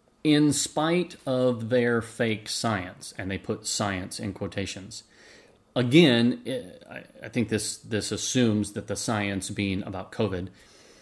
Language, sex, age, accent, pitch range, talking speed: English, male, 30-49, American, 105-130 Hz, 130 wpm